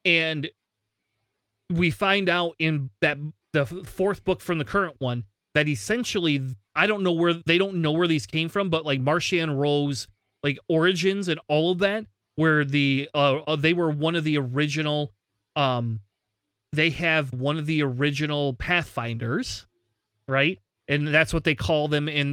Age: 30-49